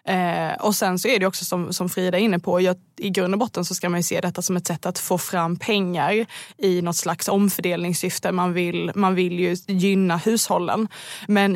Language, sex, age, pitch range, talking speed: Swedish, female, 20-39, 180-205 Hz, 225 wpm